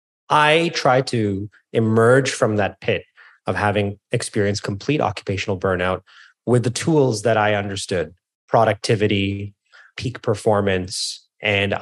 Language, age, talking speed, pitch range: English, 30-49, 115 wpm, 100-125 Hz